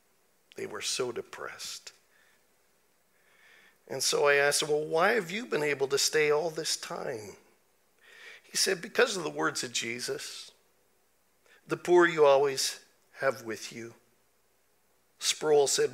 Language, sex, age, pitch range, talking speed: English, male, 50-69, 160-195 Hz, 140 wpm